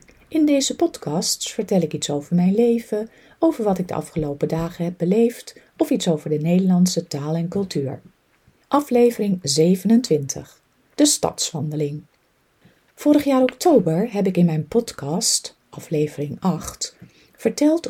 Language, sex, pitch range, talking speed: Dutch, female, 150-205 Hz, 135 wpm